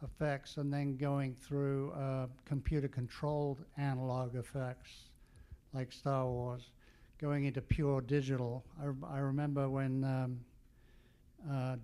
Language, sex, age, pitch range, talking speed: English, male, 60-79, 130-145 Hz, 110 wpm